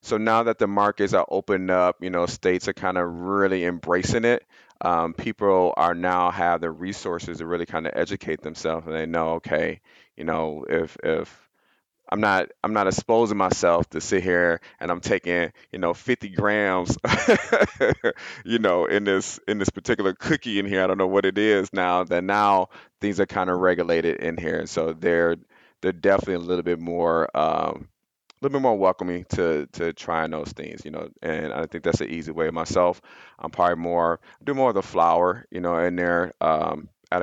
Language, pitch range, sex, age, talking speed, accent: English, 85-95 Hz, male, 30-49, 200 wpm, American